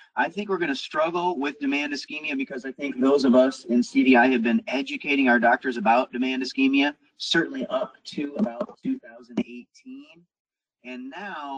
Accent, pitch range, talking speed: American, 130-205 Hz, 160 wpm